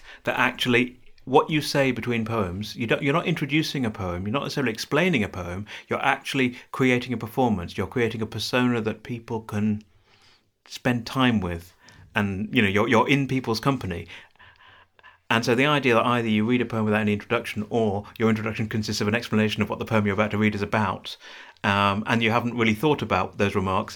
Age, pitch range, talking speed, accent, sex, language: 30-49, 100-125 Hz, 205 wpm, British, male, English